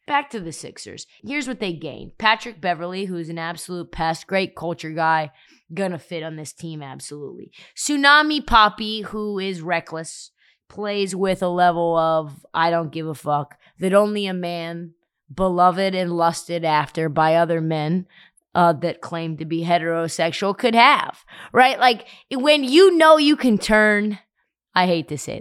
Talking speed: 165 wpm